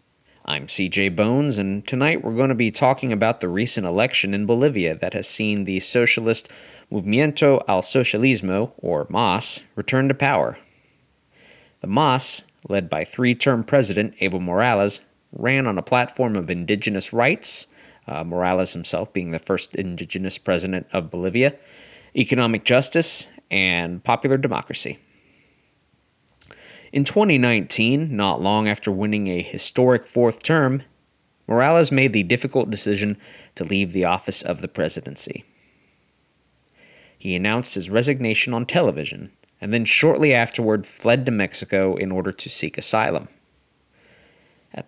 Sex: male